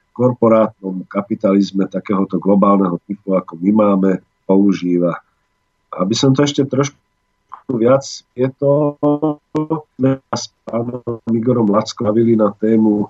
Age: 50-69